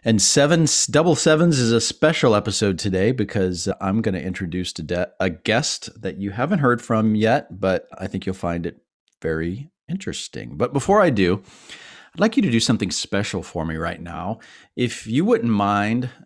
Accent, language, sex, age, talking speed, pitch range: American, English, male, 40-59, 190 wpm, 95-120 Hz